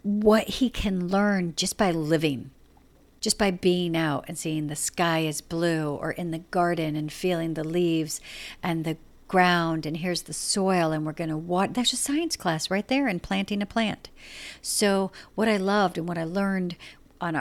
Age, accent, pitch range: 50-69, American, 155-195 Hz